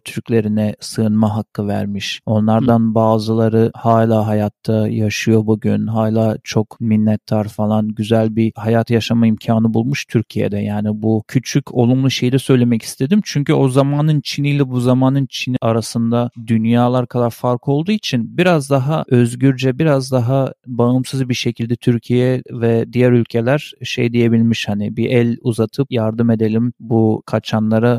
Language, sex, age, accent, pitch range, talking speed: Turkish, male, 40-59, native, 110-130 Hz, 140 wpm